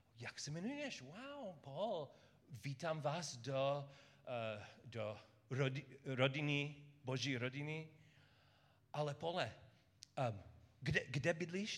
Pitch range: 120-145 Hz